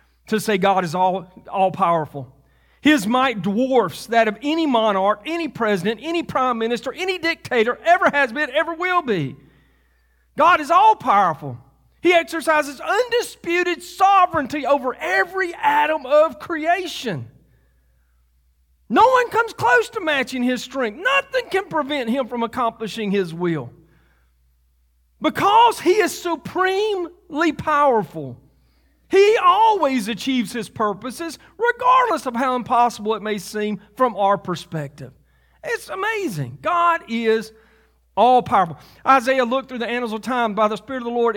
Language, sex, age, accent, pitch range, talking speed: English, male, 40-59, American, 190-325 Hz, 135 wpm